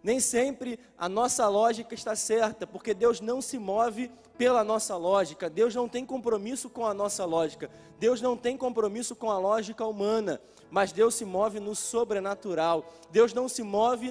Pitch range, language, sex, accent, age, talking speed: 195-230 Hz, Portuguese, male, Brazilian, 20-39, 175 wpm